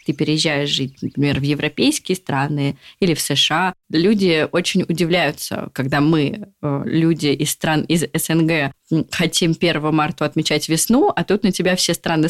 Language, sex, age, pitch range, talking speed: Russian, female, 20-39, 160-195 Hz, 150 wpm